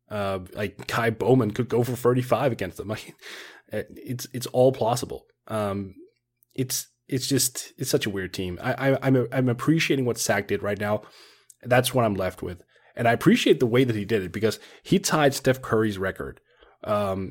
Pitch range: 95-125 Hz